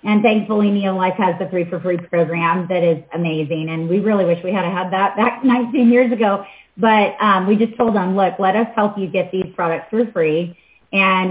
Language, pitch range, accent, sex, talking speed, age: English, 175-205 Hz, American, female, 225 wpm, 30-49